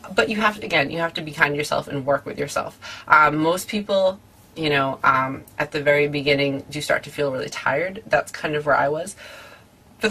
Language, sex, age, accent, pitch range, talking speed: English, female, 30-49, American, 145-180 Hz, 230 wpm